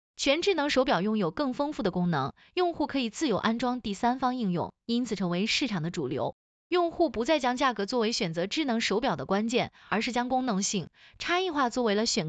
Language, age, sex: Chinese, 20-39, female